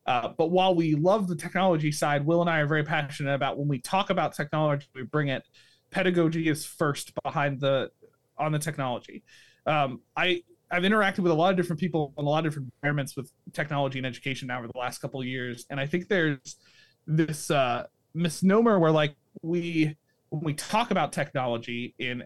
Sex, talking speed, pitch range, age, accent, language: male, 200 wpm, 135-170 Hz, 30-49, American, English